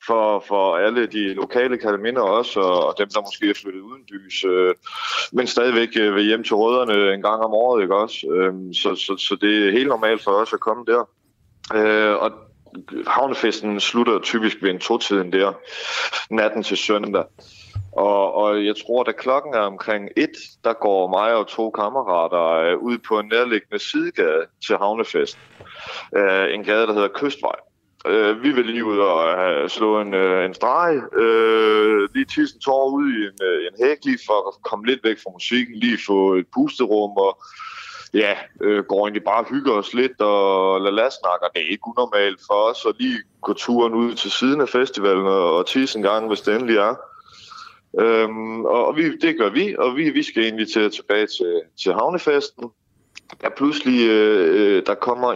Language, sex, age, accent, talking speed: Danish, male, 20-39, native, 175 wpm